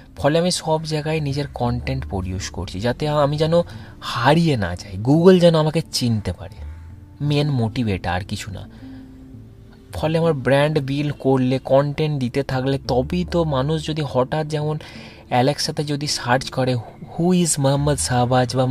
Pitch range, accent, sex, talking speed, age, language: 110-145 Hz, native, male, 130 wpm, 30-49, Bengali